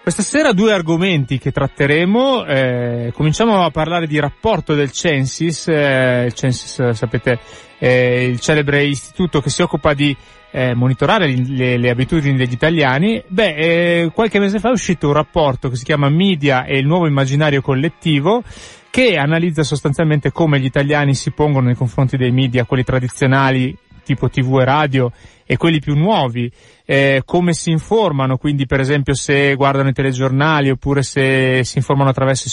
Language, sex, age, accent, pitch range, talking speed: Italian, male, 30-49, native, 130-155 Hz, 170 wpm